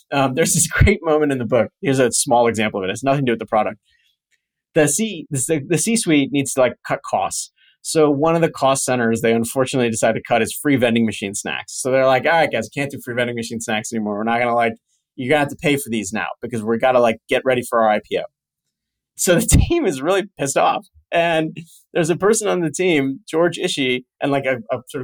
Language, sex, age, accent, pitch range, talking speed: English, male, 30-49, American, 125-160 Hz, 250 wpm